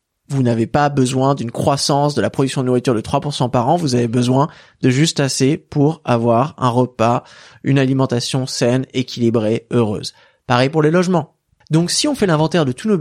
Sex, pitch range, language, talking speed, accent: male, 130-175 Hz, French, 195 wpm, French